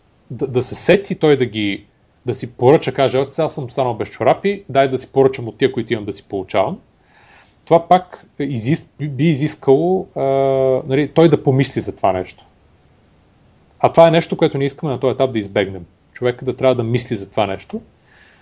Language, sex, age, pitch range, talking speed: Bulgarian, male, 30-49, 120-155 Hz, 190 wpm